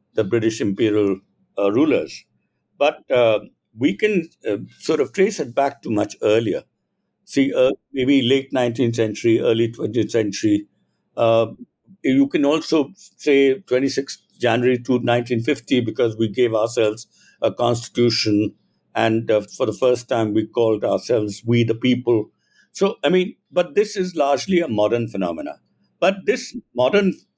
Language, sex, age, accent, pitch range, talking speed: English, male, 60-79, Indian, 120-185 Hz, 145 wpm